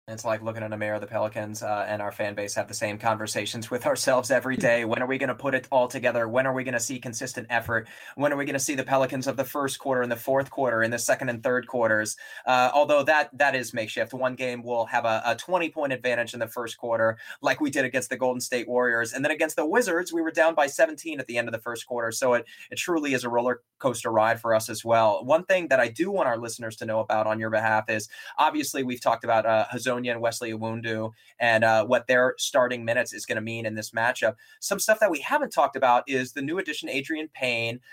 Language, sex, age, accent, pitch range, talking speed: English, male, 20-39, American, 115-140 Hz, 265 wpm